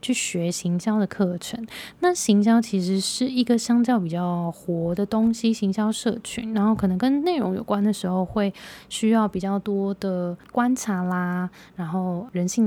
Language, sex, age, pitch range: Chinese, female, 20-39, 180-220 Hz